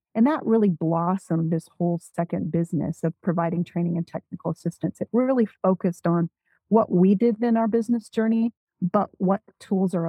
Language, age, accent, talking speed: English, 40-59, American, 175 wpm